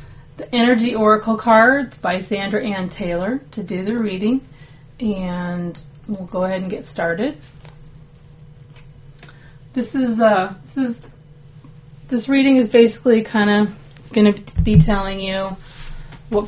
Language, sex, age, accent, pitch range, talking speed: English, female, 30-49, American, 150-215 Hz, 125 wpm